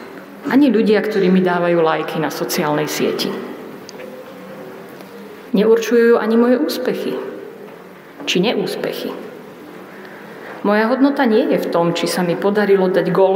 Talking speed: 120 wpm